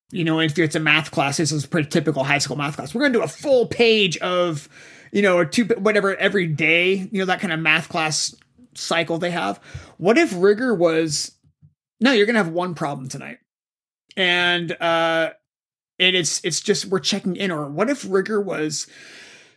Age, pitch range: 30-49, 165-210 Hz